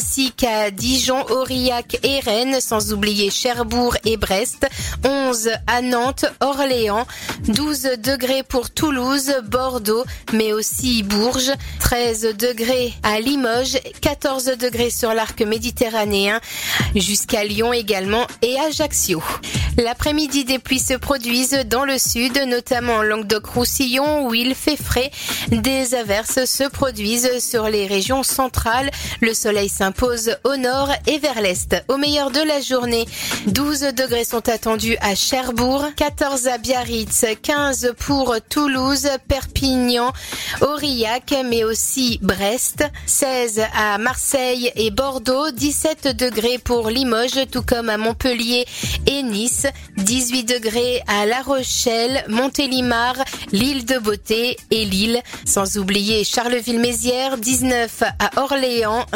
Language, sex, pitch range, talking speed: French, female, 225-265 Hz, 125 wpm